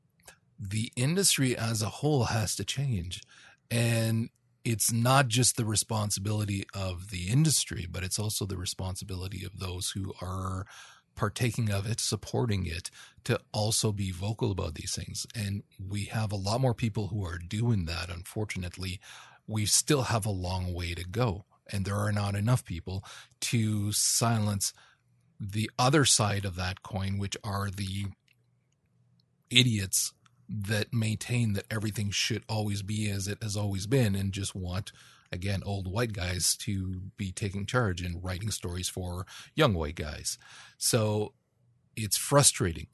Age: 40-59